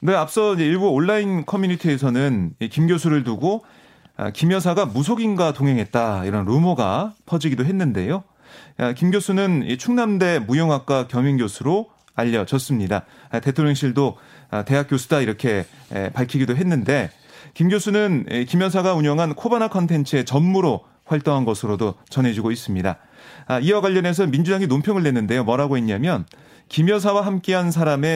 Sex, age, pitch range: male, 30-49, 130-185 Hz